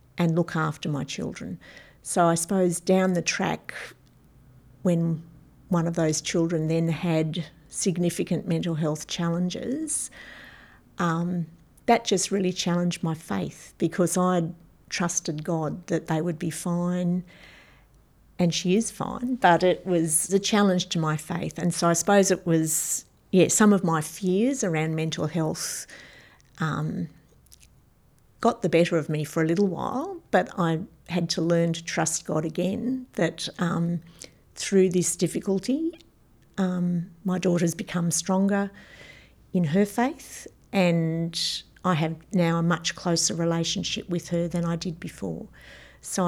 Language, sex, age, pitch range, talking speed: English, female, 50-69, 165-185 Hz, 145 wpm